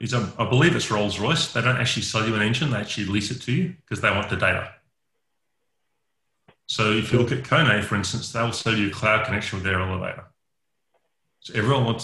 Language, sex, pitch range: English, male, 100-120 Hz